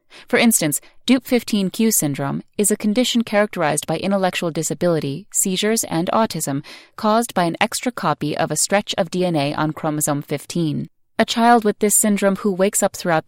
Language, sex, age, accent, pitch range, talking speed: English, female, 30-49, American, 155-210 Hz, 165 wpm